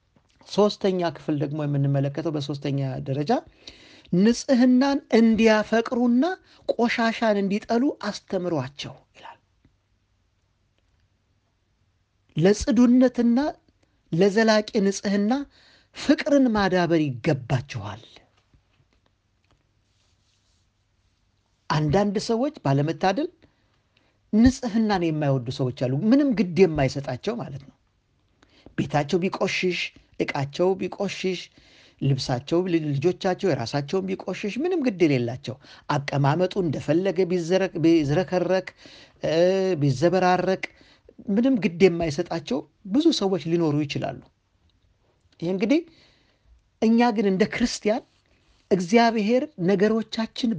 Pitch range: 140-225 Hz